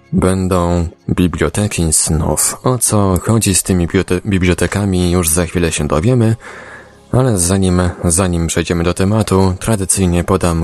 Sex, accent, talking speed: male, native, 130 wpm